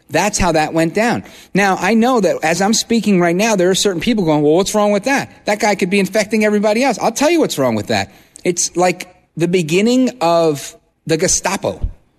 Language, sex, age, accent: English, male, 40-59, American